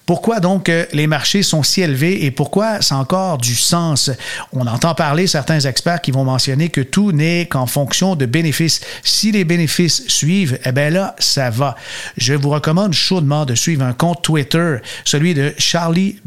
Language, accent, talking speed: French, Canadian, 180 wpm